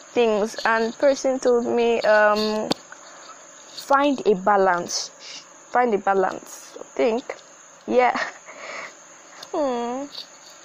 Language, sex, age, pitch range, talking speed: English, female, 20-39, 230-290 Hz, 85 wpm